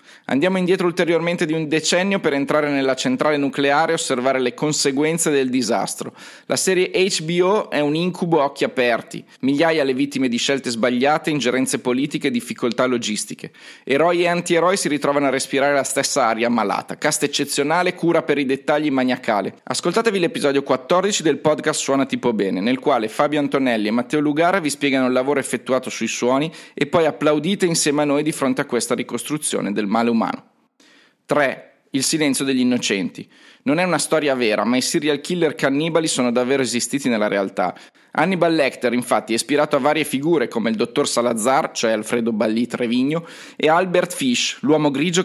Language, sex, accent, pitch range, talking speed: Italian, male, native, 130-165 Hz, 175 wpm